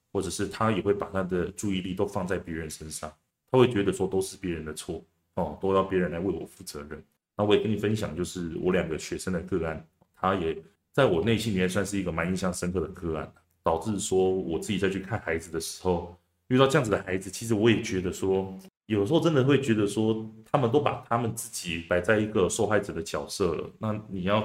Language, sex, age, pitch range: Chinese, male, 20-39, 85-100 Hz